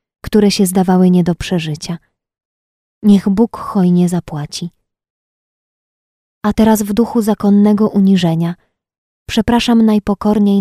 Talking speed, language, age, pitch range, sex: 100 wpm, Polish, 20-39, 175-205 Hz, female